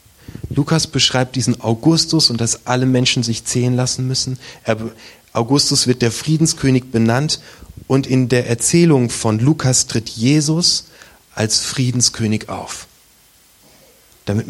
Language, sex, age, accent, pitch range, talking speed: German, male, 30-49, German, 110-140 Hz, 125 wpm